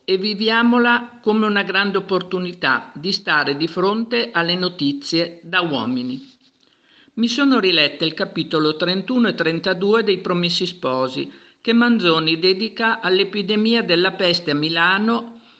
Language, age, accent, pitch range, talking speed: Italian, 50-69, native, 150-200 Hz, 125 wpm